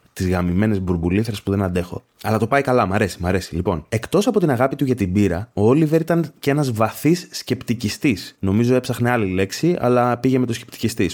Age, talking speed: 20-39, 210 wpm